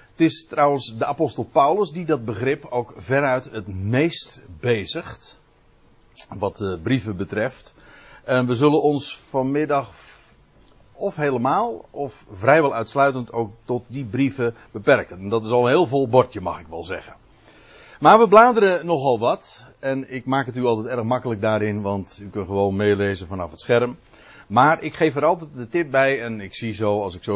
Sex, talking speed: male, 180 wpm